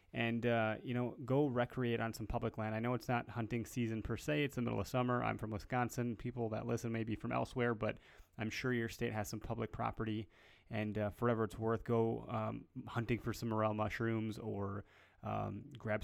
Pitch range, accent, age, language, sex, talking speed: 105-120 Hz, American, 20-39, English, male, 215 wpm